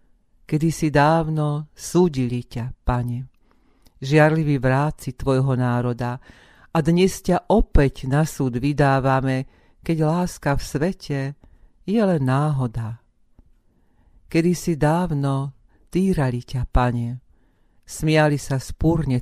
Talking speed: 105 wpm